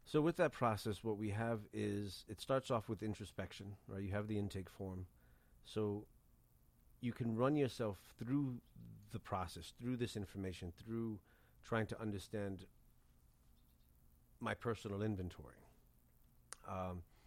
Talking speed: 130 wpm